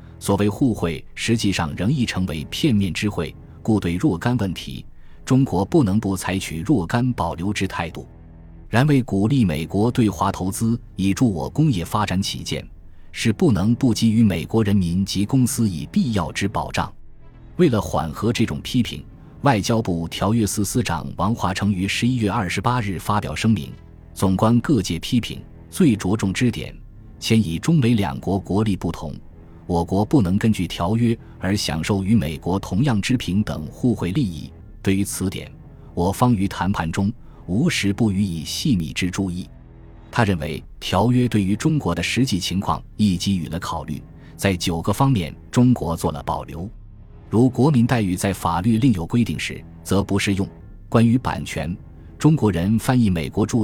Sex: male